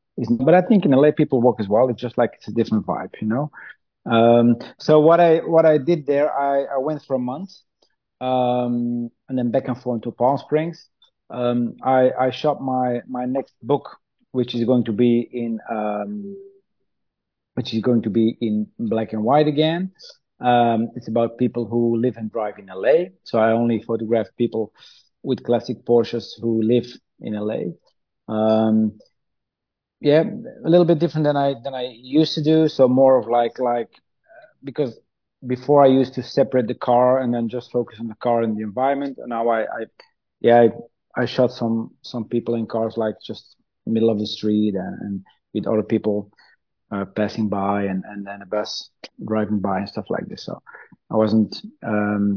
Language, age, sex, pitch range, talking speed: English, 30-49, male, 110-140 Hz, 190 wpm